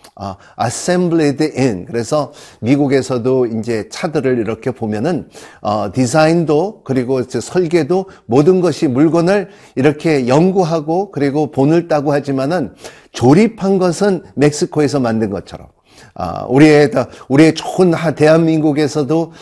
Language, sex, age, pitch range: Korean, male, 50-69, 130-165 Hz